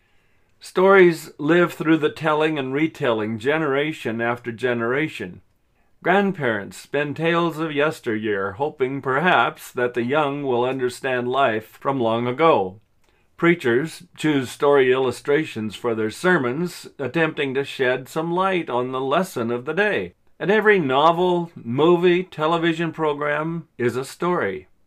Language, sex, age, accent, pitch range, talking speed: English, male, 40-59, American, 115-160 Hz, 130 wpm